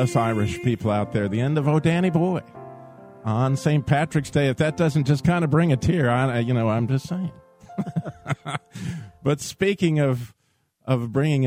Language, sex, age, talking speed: English, male, 50-69, 175 wpm